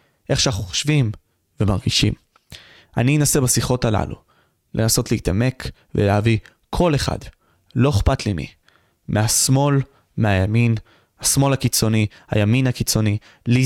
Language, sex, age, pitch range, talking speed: Hebrew, male, 20-39, 110-130 Hz, 105 wpm